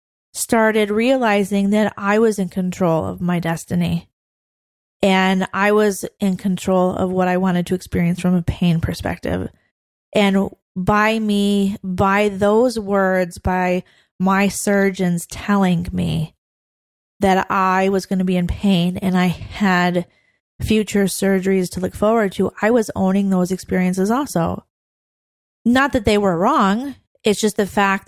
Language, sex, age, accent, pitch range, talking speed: English, female, 20-39, American, 180-205 Hz, 145 wpm